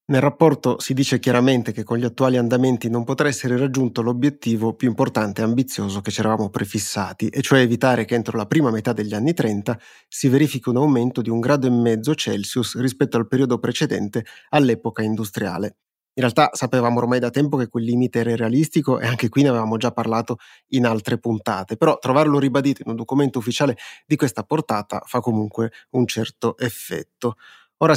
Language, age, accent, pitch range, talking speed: Italian, 30-49, native, 115-140 Hz, 185 wpm